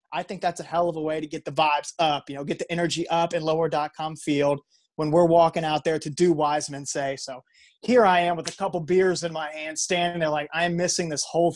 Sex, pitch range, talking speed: male, 145-170 Hz, 265 wpm